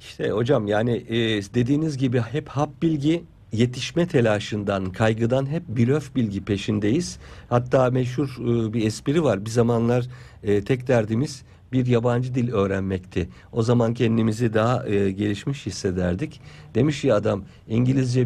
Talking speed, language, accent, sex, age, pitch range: 130 wpm, Turkish, native, male, 50-69, 100-125 Hz